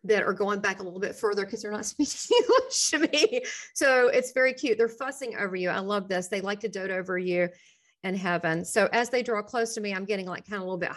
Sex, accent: female, American